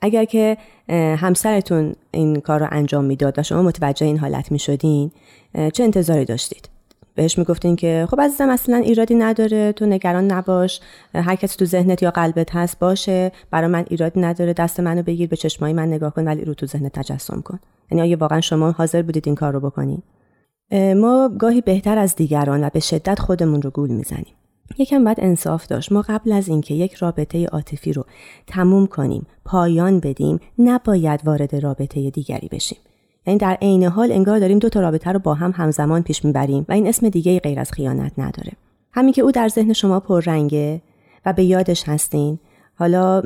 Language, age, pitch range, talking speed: Persian, 30-49, 150-195 Hz, 185 wpm